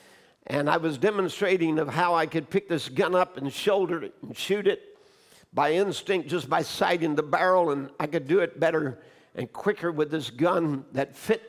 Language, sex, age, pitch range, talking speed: English, male, 60-79, 155-185 Hz, 200 wpm